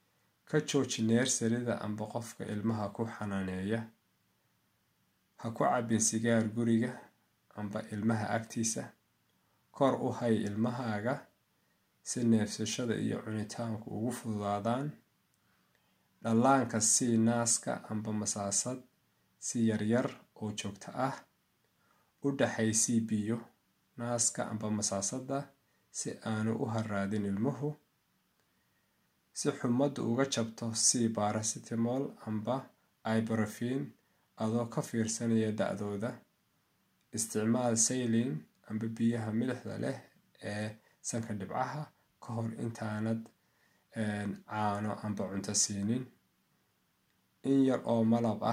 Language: English